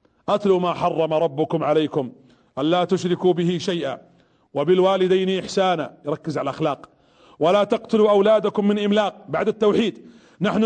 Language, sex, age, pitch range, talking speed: Arabic, male, 40-59, 175-230 Hz, 125 wpm